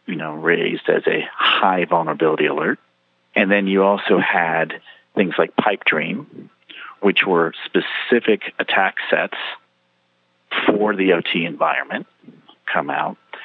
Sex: male